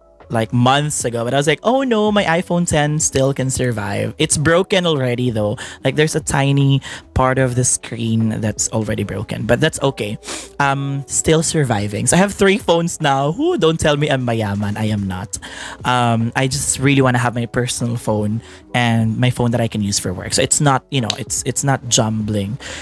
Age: 20-39